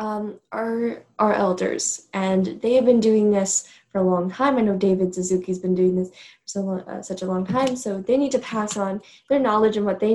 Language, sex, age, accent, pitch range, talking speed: English, female, 10-29, American, 190-235 Hz, 240 wpm